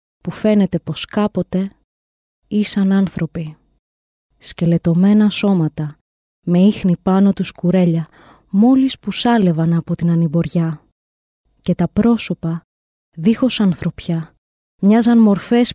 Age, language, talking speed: 20-39, Greek, 100 wpm